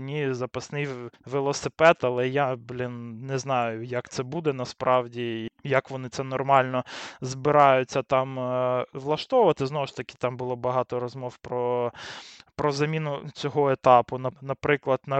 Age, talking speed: 20-39, 130 wpm